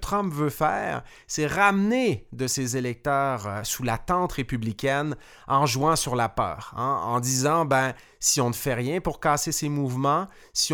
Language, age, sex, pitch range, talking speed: French, 30-49, male, 125-165 Hz, 175 wpm